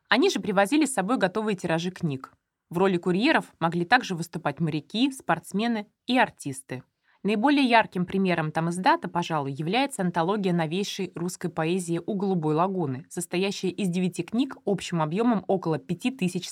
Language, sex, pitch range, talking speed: Russian, female, 165-205 Hz, 155 wpm